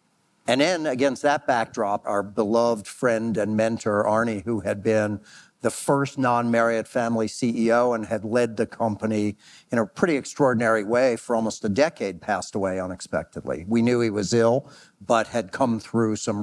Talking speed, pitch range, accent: 170 wpm, 110-125 Hz, American